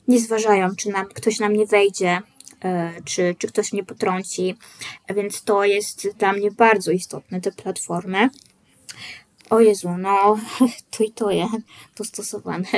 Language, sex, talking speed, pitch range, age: Polish, female, 140 wpm, 190-225 Hz, 20-39